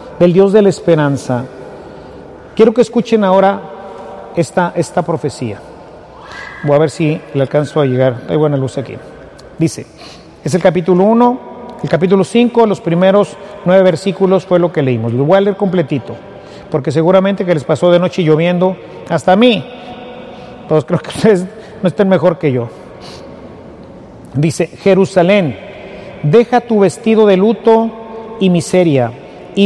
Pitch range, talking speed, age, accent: 160-215 Hz, 150 wpm, 40-59, Mexican